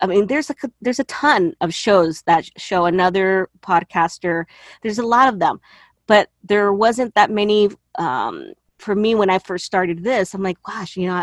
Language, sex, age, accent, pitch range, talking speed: English, female, 30-49, American, 170-200 Hz, 190 wpm